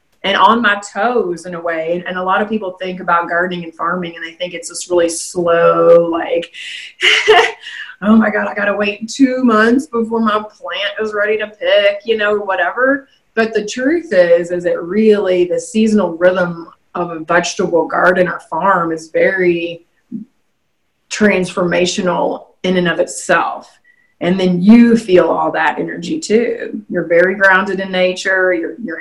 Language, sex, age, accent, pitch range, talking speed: English, female, 30-49, American, 175-220 Hz, 170 wpm